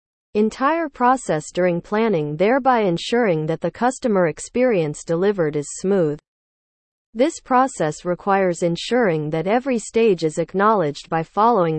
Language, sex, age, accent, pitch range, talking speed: English, female, 40-59, American, 160-235 Hz, 120 wpm